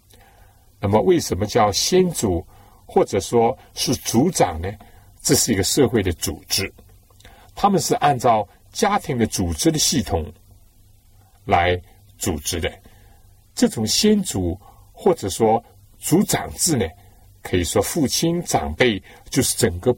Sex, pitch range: male, 100-120 Hz